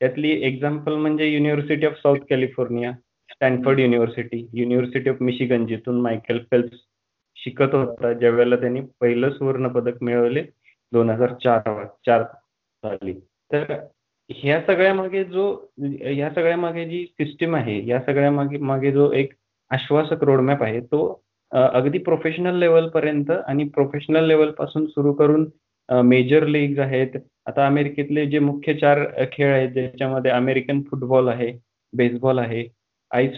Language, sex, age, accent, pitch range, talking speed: Marathi, male, 20-39, native, 125-150 Hz, 110 wpm